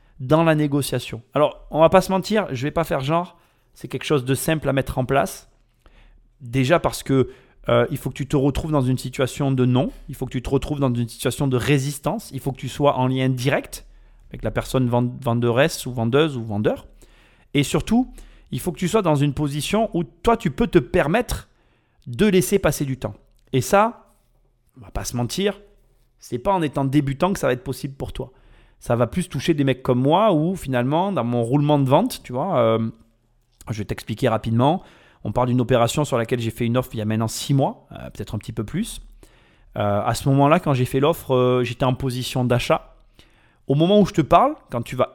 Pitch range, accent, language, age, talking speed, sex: 125-165 Hz, French, French, 30-49, 230 wpm, male